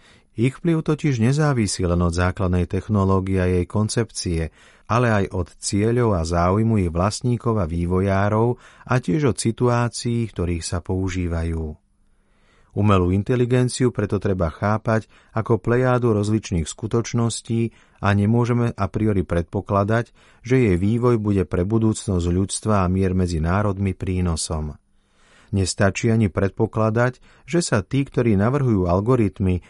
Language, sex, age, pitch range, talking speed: Slovak, male, 40-59, 95-115 Hz, 125 wpm